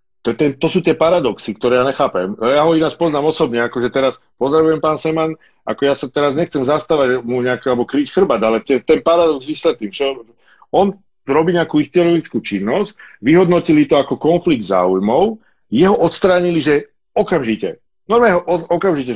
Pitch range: 120-165 Hz